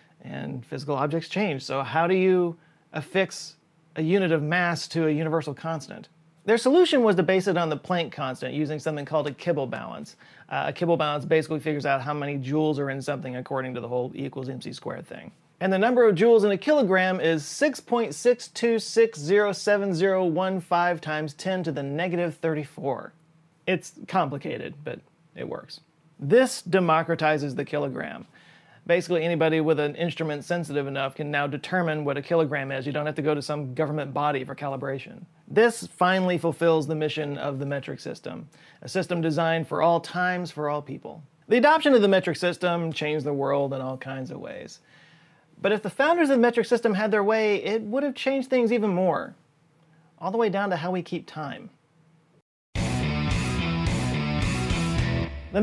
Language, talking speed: English, 175 wpm